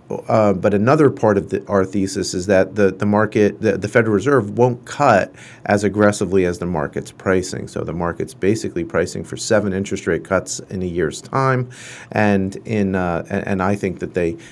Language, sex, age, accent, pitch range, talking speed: English, male, 40-59, American, 90-110 Hz, 200 wpm